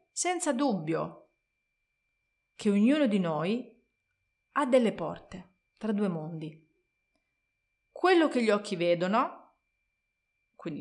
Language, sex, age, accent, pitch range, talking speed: Italian, female, 30-49, native, 170-230 Hz, 100 wpm